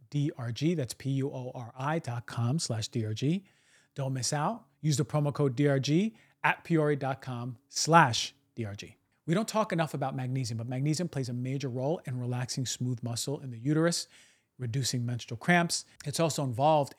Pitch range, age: 125-150 Hz, 40-59